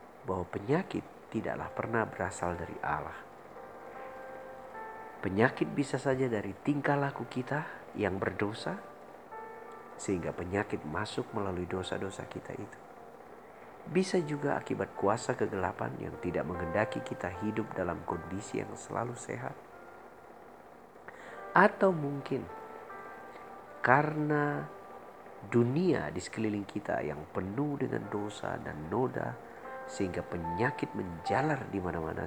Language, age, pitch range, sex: Indonesian, 50-69, 90-135 Hz, male